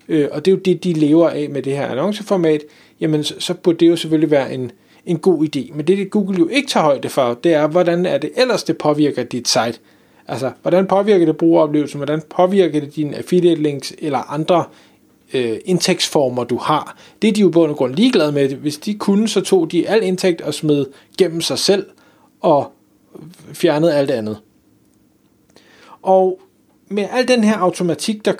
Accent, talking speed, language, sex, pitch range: native, 195 wpm, Danish, male, 150-185 Hz